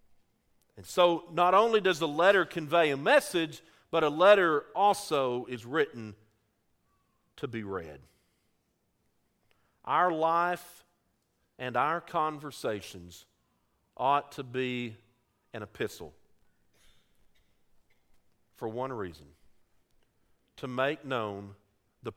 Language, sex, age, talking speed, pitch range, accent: English, male, 50-69, 95 wpm, 105-165 Hz, American